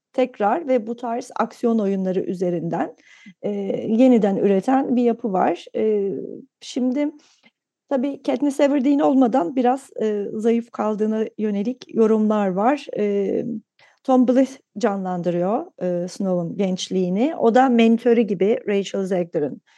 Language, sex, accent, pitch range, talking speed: Turkish, female, native, 185-250 Hz, 120 wpm